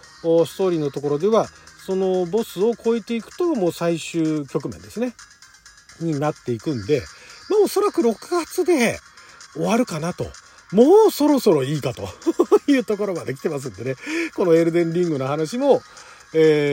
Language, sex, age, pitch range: Japanese, male, 40-59, 135-230 Hz